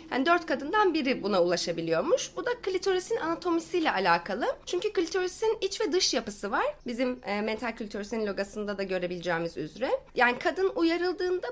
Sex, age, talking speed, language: female, 30-49, 145 wpm, Turkish